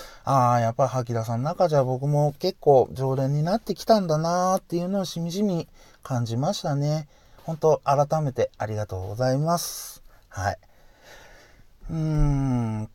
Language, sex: Japanese, male